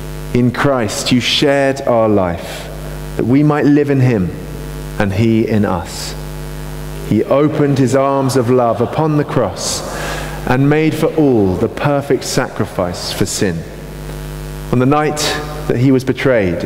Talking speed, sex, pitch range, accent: 150 wpm, male, 120-155 Hz, British